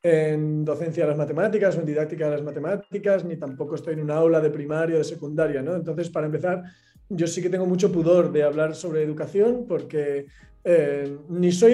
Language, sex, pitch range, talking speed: Spanish, male, 155-195 Hz, 205 wpm